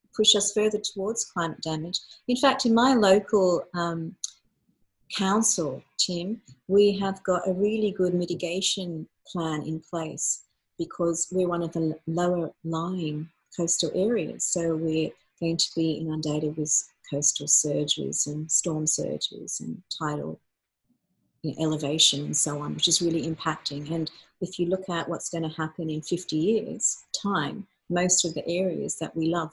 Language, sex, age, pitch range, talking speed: English, female, 40-59, 155-185 Hz, 150 wpm